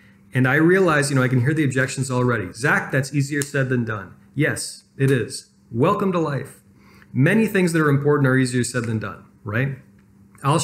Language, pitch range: English, 115-140 Hz